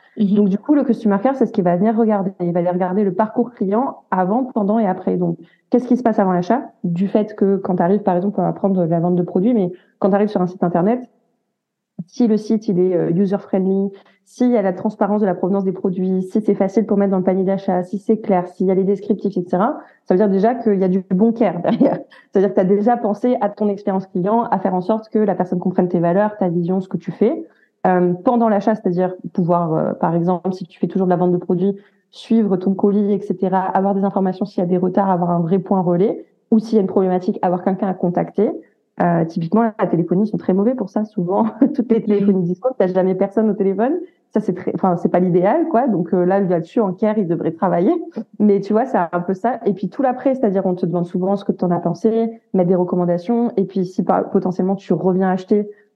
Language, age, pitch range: French, 30-49, 185-220 Hz